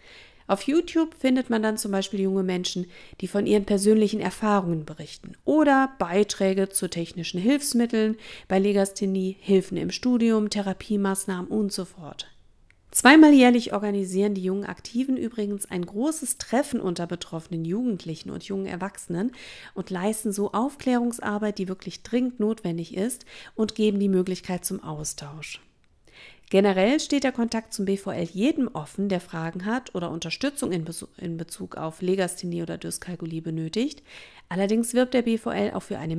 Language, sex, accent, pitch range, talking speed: German, female, German, 175-225 Hz, 145 wpm